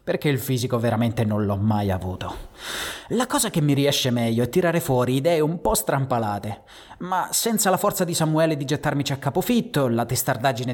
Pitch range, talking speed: 120-160 Hz, 185 wpm